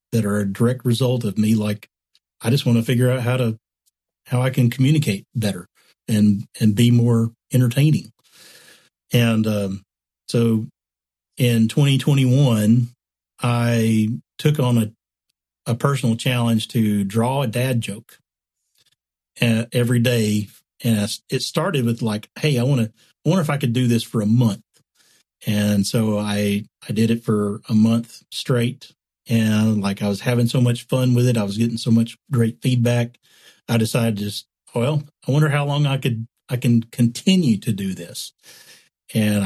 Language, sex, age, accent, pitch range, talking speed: English, male, 40-59, American, 105-125 Hz, 165 wpm